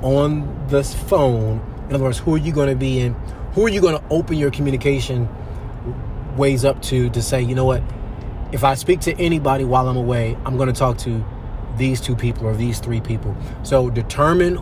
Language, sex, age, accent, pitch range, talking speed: English, male, 30-49, American, 115-140 Hz, 200 wpm